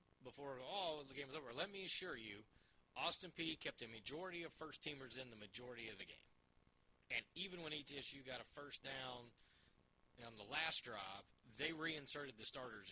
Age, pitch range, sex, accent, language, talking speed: 30-49, 115-150 Hz, male, American, English, 185 wpm